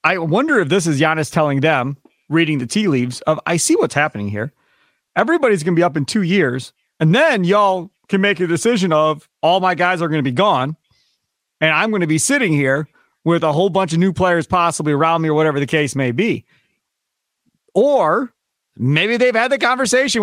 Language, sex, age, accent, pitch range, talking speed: English, male, 40-59, American, 150-200 Hz, 210 wpm